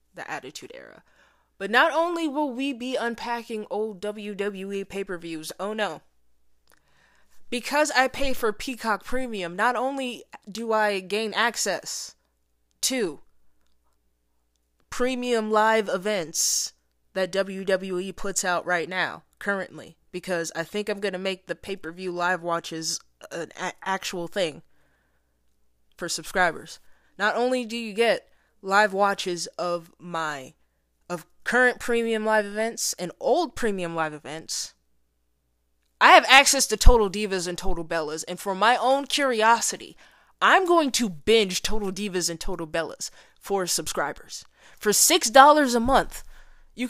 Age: 20-39